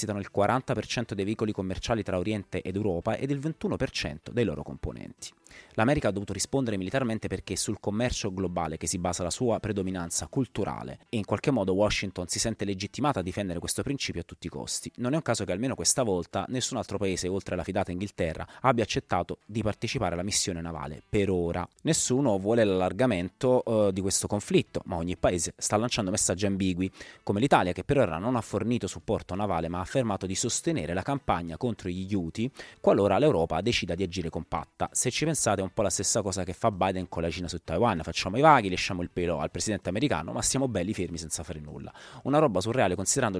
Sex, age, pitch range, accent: male, 30-49, 90-115 Hz, native